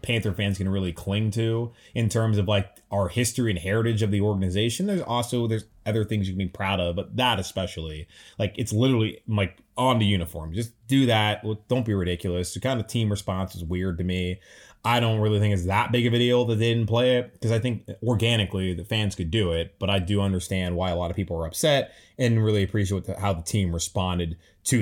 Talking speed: 230 wpm